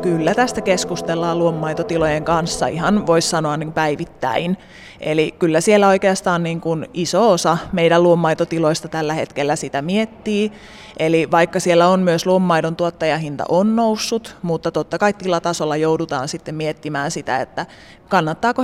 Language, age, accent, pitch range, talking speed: Finnish, 20-39, native, 155-190 Hz, 140 wpm